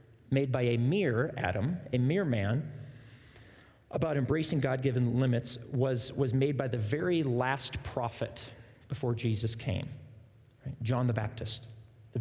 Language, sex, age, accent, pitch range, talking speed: English, male, 40-59, American, 120-155 Hz, 135 wpm